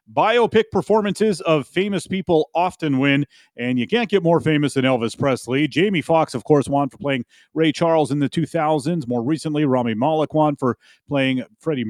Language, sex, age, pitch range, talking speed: English, male, 30-49, 125-170 Hz, 180 wpm